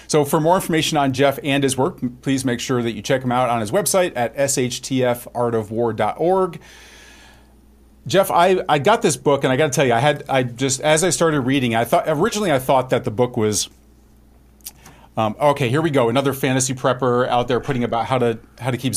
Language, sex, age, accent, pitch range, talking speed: English, male, 40-59, American, 115-145 Hz, 215 wpm